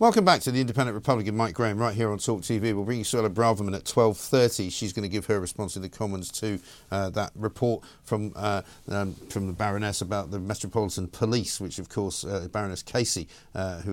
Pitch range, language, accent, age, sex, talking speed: 95-120 Hz, English, British, 50-69, male, 230 wpm